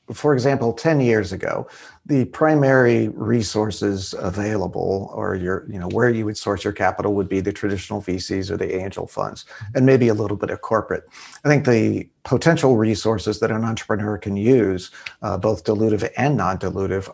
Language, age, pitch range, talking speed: English, 40-59, 105-125 Hz, 175 wpm